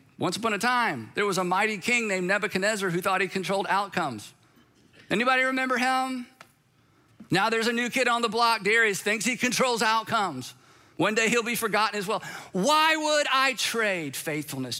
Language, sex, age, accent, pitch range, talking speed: English, male, 50-69, American, 140-210 Hz, 180 wpm